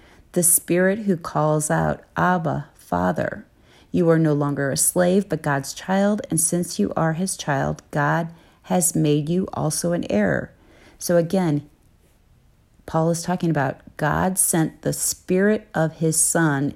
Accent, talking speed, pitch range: American, 150 wpm, 140-170 Hz